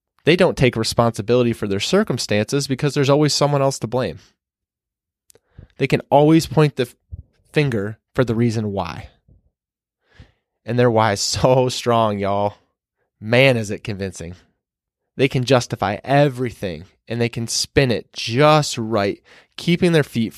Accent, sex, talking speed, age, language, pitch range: American, male, 145 wpm, 20-39, English, 105-140 Hz